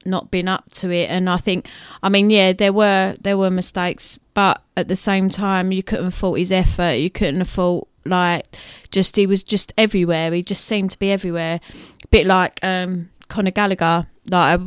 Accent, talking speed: British, 210 wpm